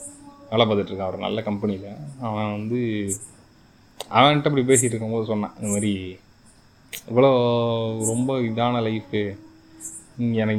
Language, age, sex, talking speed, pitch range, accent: Tamil, 20-39, male, 110 wpm, 105-125 Hz, native